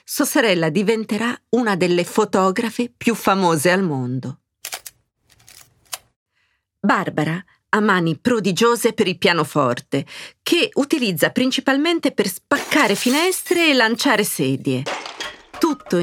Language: Italian